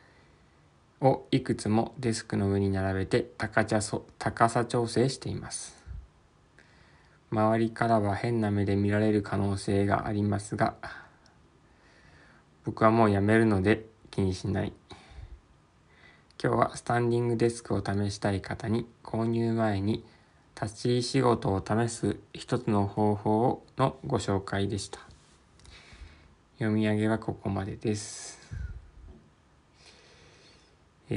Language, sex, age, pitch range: Japanese, male, 20-39, 100-115 Hz